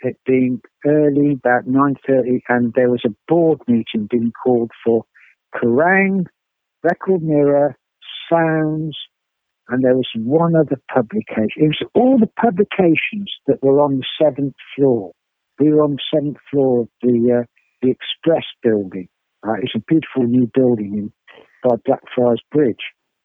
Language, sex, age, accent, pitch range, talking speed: English, male, 60-79, British, 125-155 Hz, 145 wpm